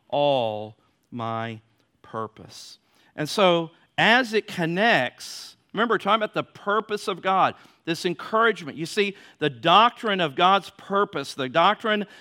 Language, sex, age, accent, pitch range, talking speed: English, male, 50-69, American, 150-225 Hz, 130 wpm